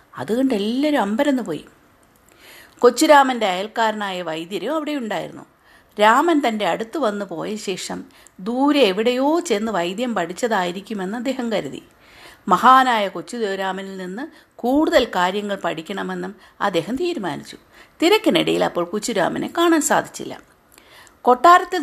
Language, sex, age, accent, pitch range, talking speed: Malayalam, female, 50-69, native, 190-260 Hz, 100 wpm